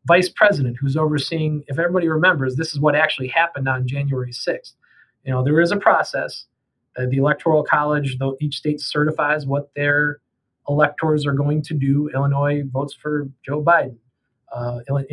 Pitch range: 135-155 Hz